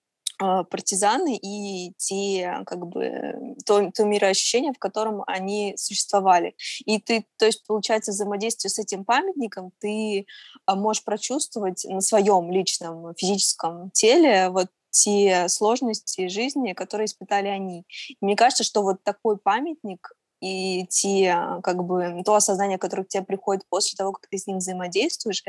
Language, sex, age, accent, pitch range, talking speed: Russian, female, 20-39, native, 185-220 Hz, 120 wpm